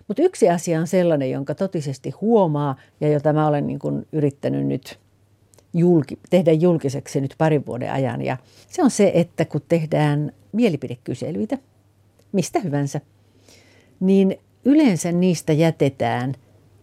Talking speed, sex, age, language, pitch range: 130 wpm, female, 50-69, English, 140-195 Hz